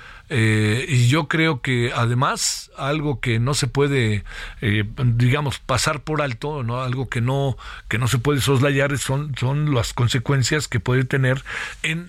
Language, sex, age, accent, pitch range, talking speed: Spanish, male, 50-69, Mexican, 130-155 Hz, 165 wpm